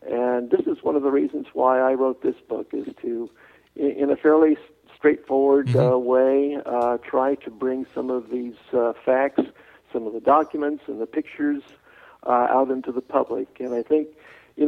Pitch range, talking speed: 125-150 Hz, 185 wpm